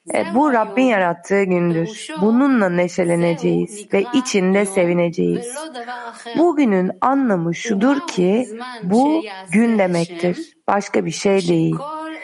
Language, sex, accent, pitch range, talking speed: Turkish, female, native, 185-250 Hz, 100 wpm